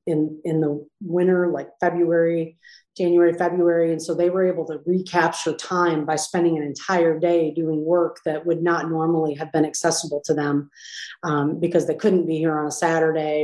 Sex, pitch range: female, 160-180 Hz